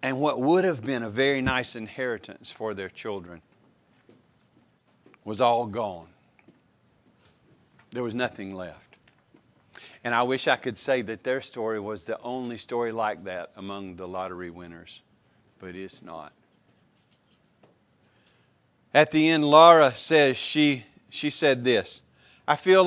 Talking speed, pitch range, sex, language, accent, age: 135 wpm, 120-160 Hz, male, English, American, 50-69